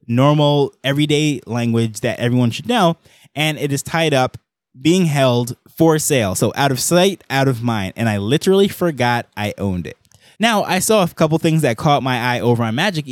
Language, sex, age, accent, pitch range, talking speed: English, male, 20-39, American, 120-155 Hz, 195 wpm